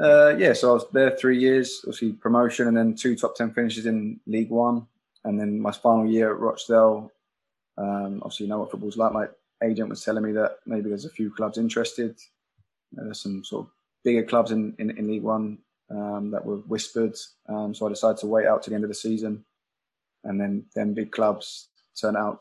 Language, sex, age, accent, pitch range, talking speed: English, male, 20-39, British, 105-115 Hz, 215 wpm